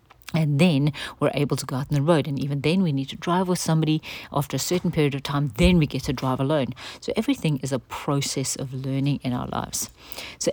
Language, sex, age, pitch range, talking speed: English, female, 50-69, 135-165 Hz, 240 wpm